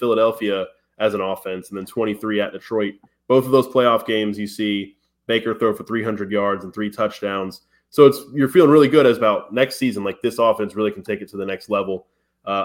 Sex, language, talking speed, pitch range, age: male, English, 220 wpm, 100-120 Hz, 20-39